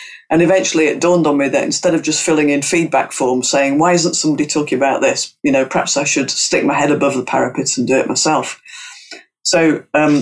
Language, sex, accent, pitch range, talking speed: English, female, British, 140-180 Hz, 225 wpm